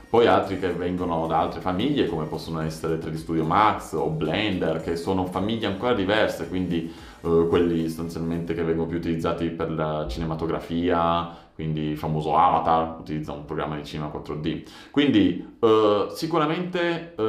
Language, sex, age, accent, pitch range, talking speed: Italian, male, 30-49, native, 80-100 Hz, 155 wpm